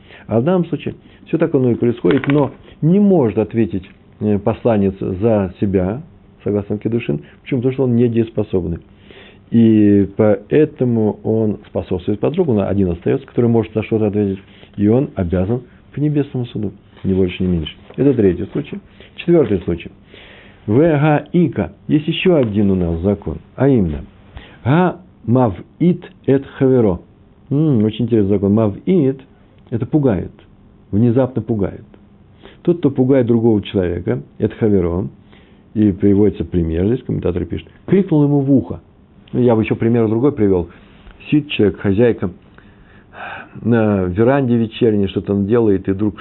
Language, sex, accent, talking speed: Russian, male, native, 140 wpm